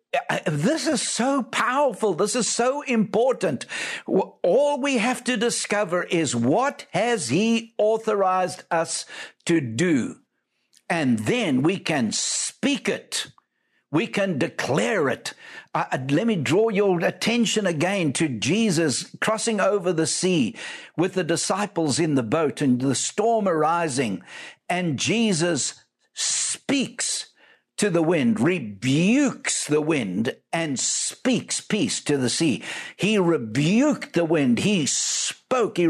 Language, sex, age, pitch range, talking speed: English, male, 60-79, 165-225 Hz, 125 wpm